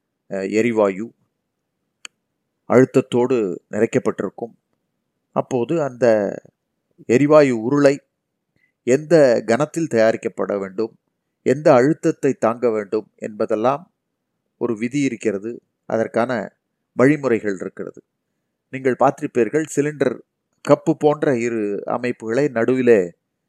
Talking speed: 75 wpm